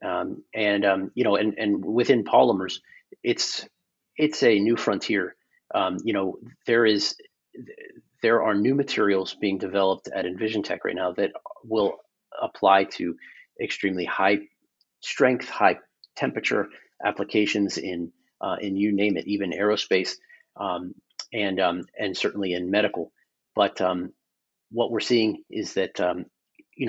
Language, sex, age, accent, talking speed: English, male, 40-59, American, 145 wpm